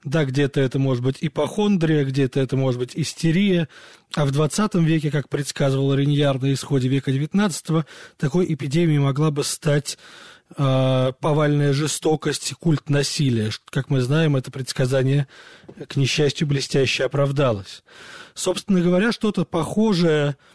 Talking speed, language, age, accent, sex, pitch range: 135 wpm, Russian, 20-39, native, male, 135-165 Hz